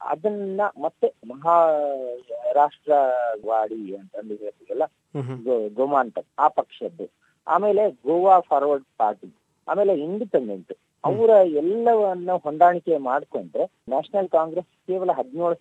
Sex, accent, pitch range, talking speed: male, native, 145-200 Hz, 90 wpm